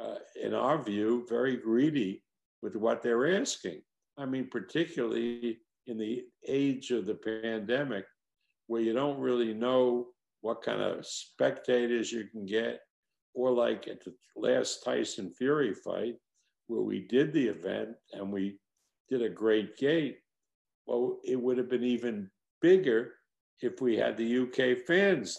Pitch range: 110-130 Hz